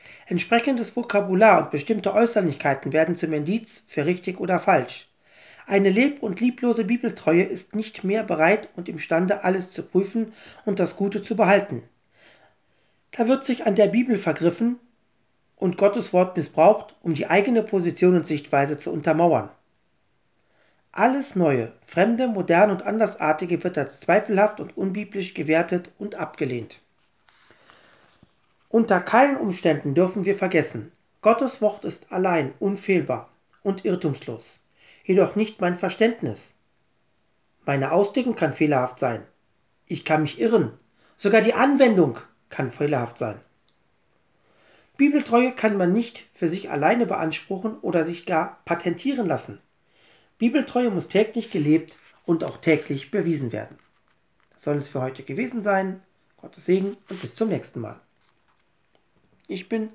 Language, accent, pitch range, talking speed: German, German, 165-220 Hz, 135 wpm